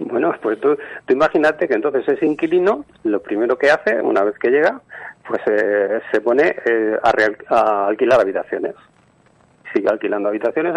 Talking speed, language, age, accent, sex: 165 wpm, Spanish, 40-59, Spanish, male